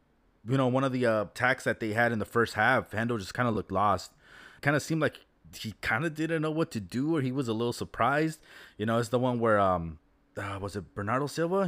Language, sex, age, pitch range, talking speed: English, male, 20-39, 100-125 Hz, 255 wpm